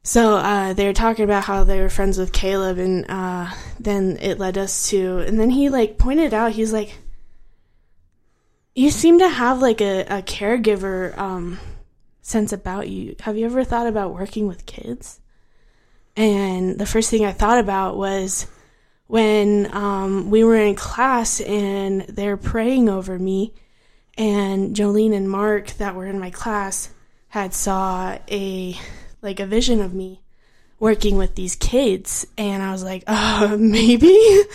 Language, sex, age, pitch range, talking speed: English, female, 10-29, 195-225 Hz, 165 wpm